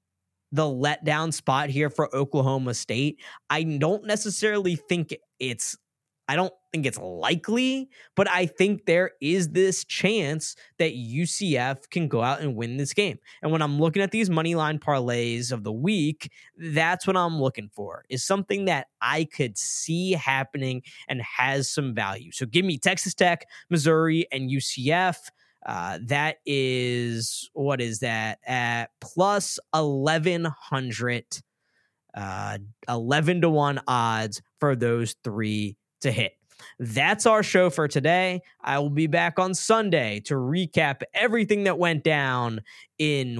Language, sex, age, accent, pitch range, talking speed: English, male, 20-39, American, 125-175 Hz, 145 wpm